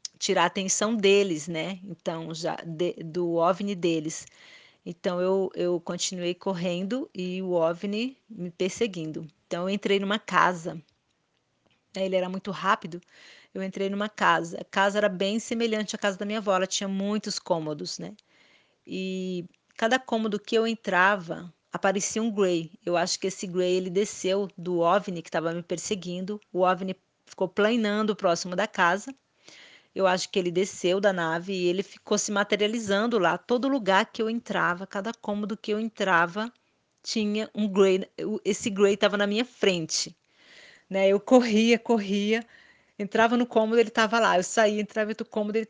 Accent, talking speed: Brazilian, 165 wpm